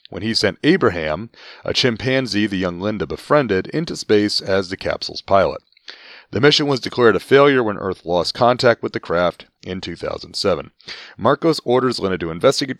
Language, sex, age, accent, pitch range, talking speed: English, male, 30-49, American, 95-135 Hz, 170 wpm